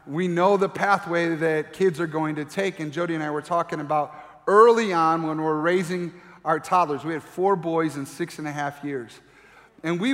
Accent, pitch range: American, 165-210 Hz